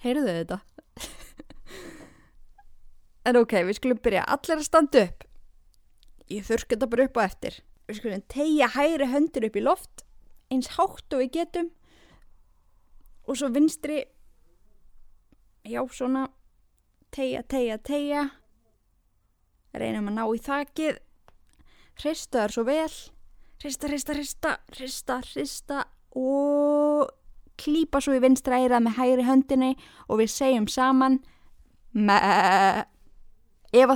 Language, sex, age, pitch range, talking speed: English, female, 20-39, 210-285 Hz, 115 wpm